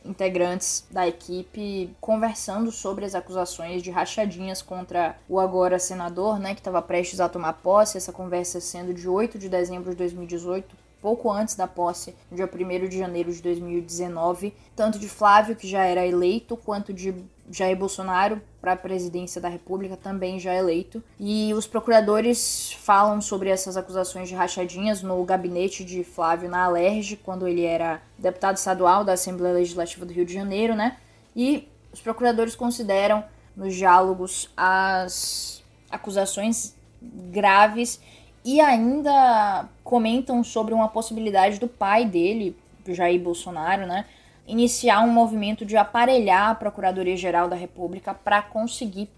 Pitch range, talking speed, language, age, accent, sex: 180-220 Hz, 145 wpm, Portuguese, 10-29, Brazilian, female